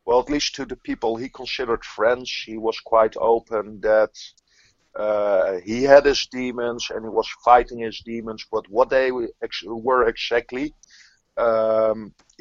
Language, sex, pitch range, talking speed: English, male, 115-140 Hz, 150 wpm